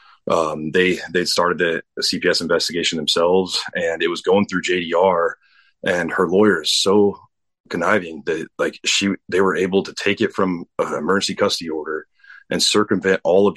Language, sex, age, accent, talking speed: English, male, 30-49, American, 170 wpm